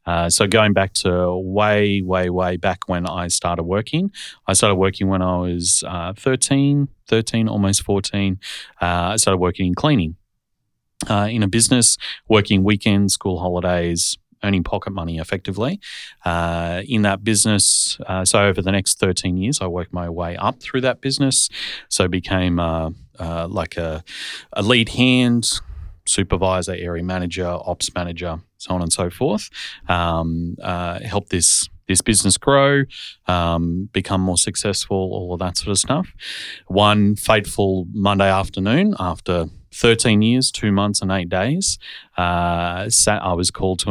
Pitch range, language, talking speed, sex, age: 90-105 Hz, English, 160 wpm, male, 30-49